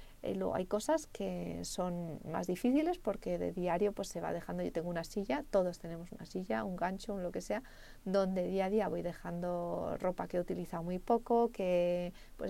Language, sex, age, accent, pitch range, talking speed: Spanish, female, 30-49, Spanish, 175-220 Hz, 205 wpm